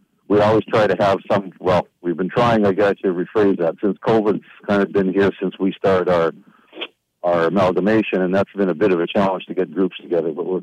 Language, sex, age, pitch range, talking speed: English, male, 50-69, 90-110 Hz, 230 wpm